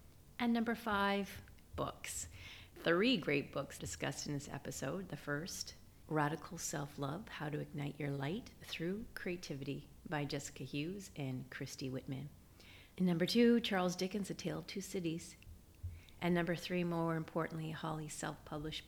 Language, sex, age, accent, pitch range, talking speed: English, female, 40-59, American, 135-170 Hz, 145 wpm